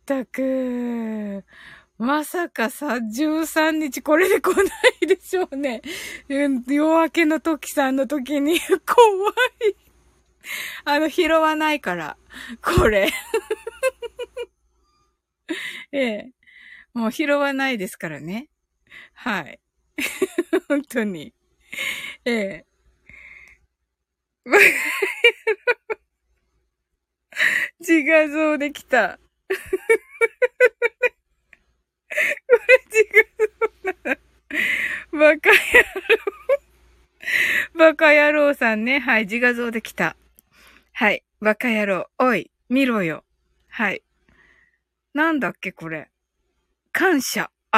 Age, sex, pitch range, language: 20-39, female, 260-405 Hz, Japanese